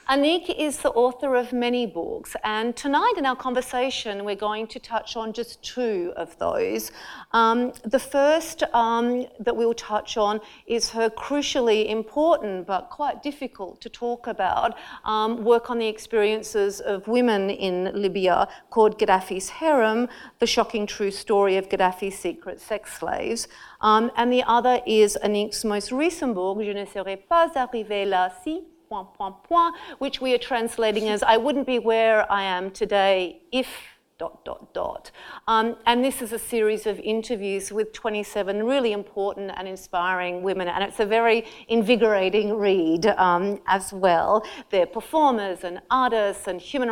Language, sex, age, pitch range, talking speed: English, female, 40-59, 200-250 Hz, 155 wpm